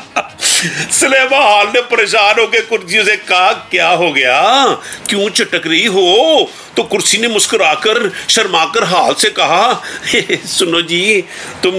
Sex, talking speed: male, 110 wpm